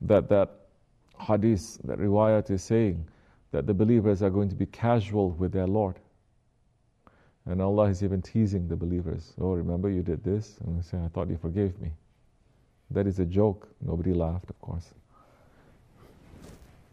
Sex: male